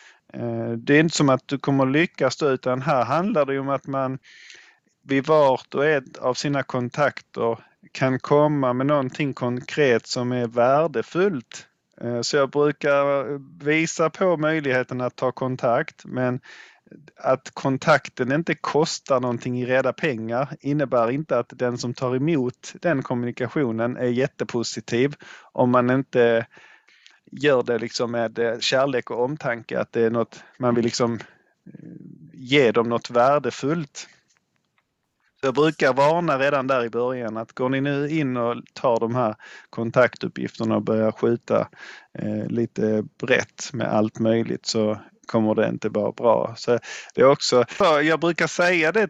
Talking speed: 150 wpm